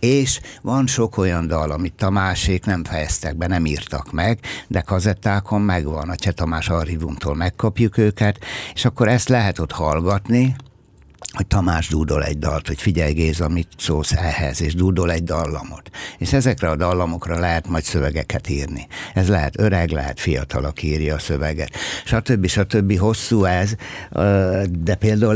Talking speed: 165 wpm